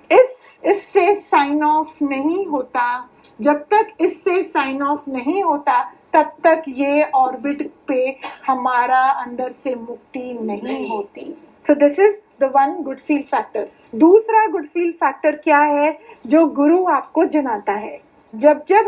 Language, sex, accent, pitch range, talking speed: Hindi, female, native, 280-370 Hz, 135 wpm